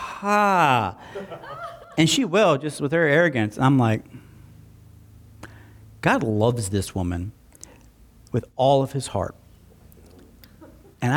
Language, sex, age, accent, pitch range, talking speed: English, male, 40-59, American, 115-180 Hz, 105 wpm